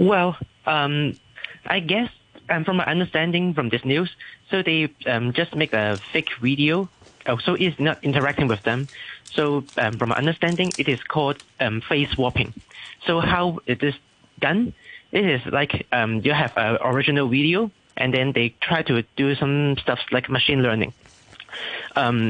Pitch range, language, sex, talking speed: 120-165 Hz, English, male, 165 wpm